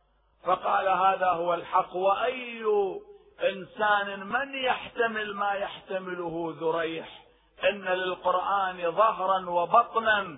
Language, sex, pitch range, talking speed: Arabic, male, 180-240 Hz, 85 wpm